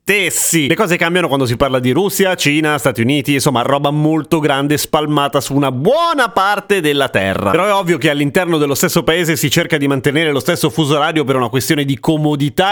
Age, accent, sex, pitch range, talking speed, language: 30-49, native, male, 130-170 Hz, 210 wpm, Italian